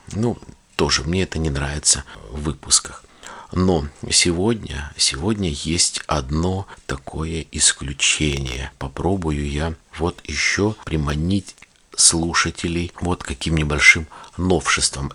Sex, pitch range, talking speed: male, 75-90 Hz, 100 wpm